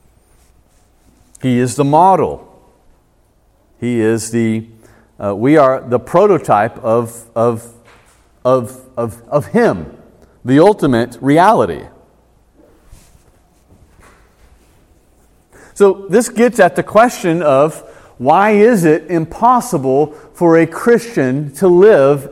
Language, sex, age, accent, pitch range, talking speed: English, male, 40-59, American, 115-180 Hz, 100 wpm